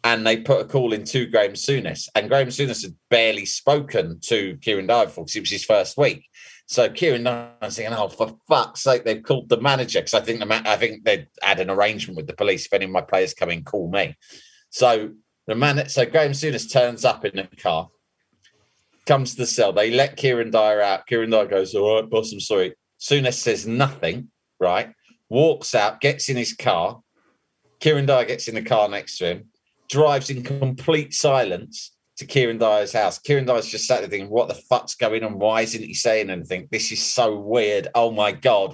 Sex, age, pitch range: male, 30-49, 110-145 Hz